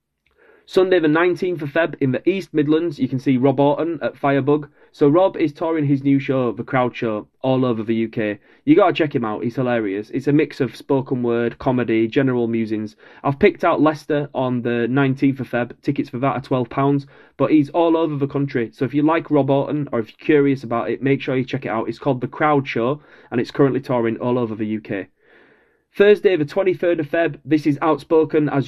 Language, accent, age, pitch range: English, British, 30-49, 120-150 Hz